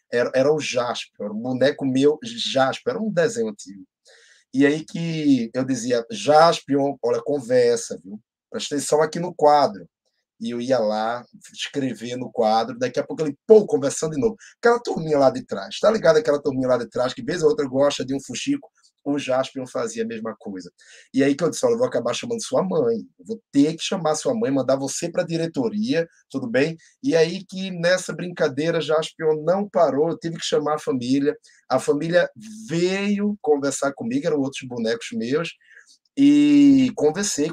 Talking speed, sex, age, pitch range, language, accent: 190 wpm, male, 20-39, 135-210 Hz, Portuguese, Brazilian